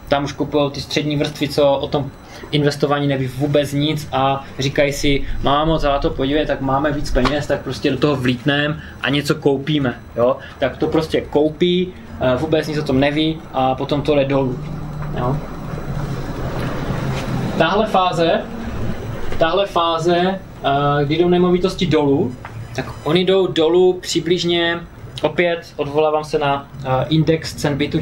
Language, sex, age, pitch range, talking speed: Czech, male, 20-39, 125-165 Hz, 140 wpm